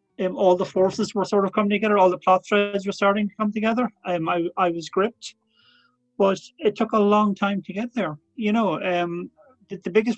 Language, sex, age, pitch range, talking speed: English, male, 30-49, 170-210 Hz, 225 wpm